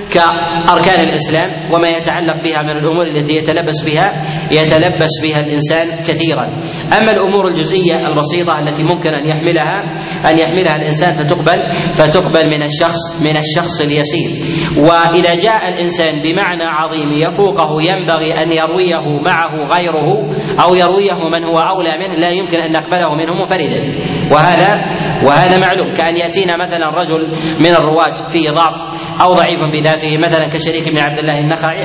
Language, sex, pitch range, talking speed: Arabic, male, 160-180 Hz, 140 wpm